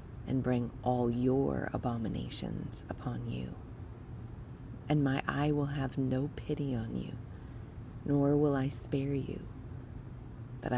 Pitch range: 115-135 Hz